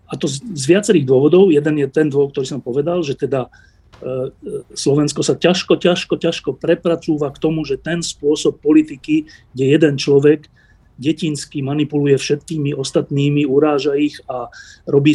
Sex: male